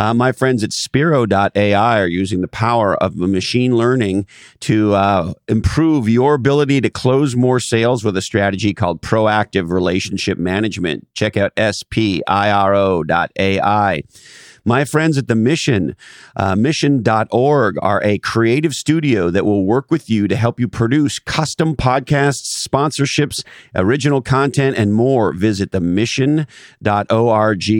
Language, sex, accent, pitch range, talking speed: English, male, American, 100-130 Hz, 135 wpm